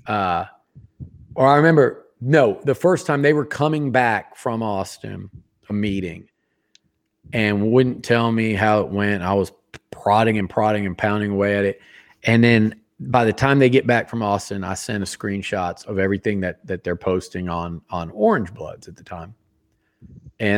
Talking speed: 180 wpm